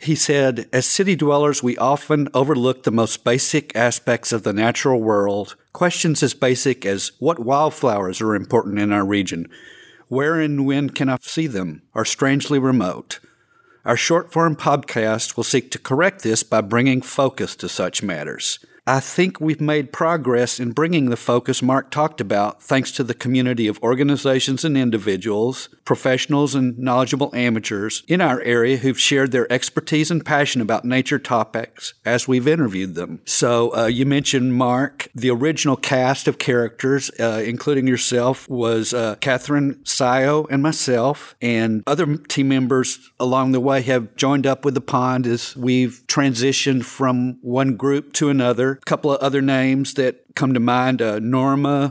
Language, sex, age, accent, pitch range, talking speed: English, male, 50-69, American, 120-140 Hz, 165 wpm